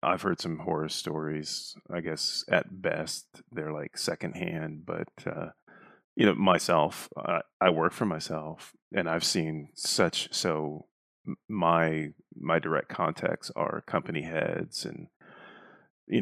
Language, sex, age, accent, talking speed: English, male, 30-49, American, 135 wpm